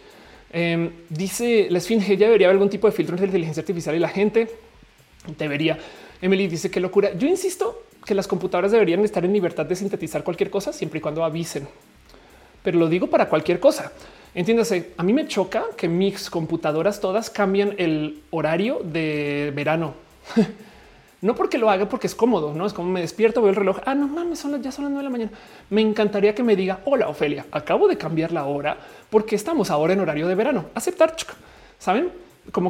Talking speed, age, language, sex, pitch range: 195 wpm, 30-49, Spanish, male, 170-215 Hz